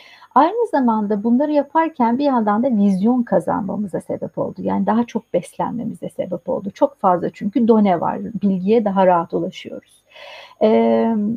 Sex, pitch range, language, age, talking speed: female, 195-275 Hz, Turkish, 60-79, 145 wpm